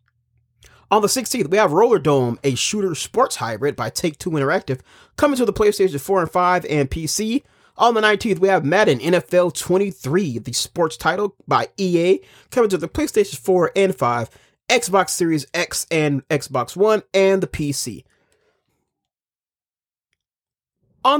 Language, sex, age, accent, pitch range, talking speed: English, male, 30-49, American, 130-190 Hz, 150 wpm